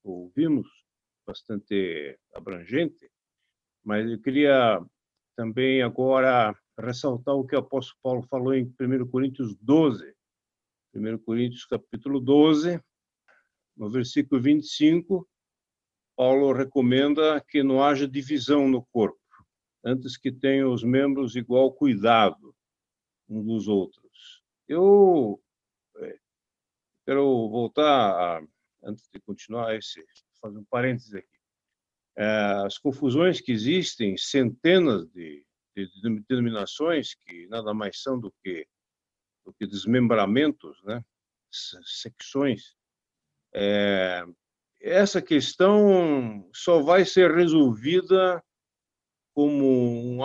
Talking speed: 100 wpm